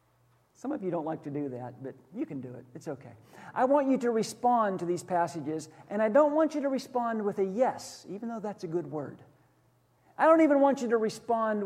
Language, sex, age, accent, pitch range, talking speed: English, male, 50-69, American, 155-230 Hz, 235 wpm